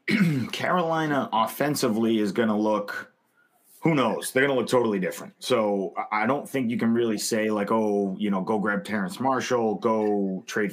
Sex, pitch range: male, 105-135 Hz